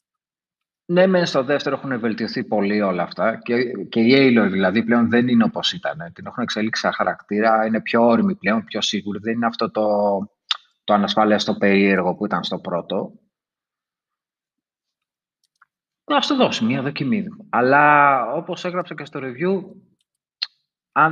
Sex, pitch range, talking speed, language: male, 110-155 Hz, 150 wpm, Greek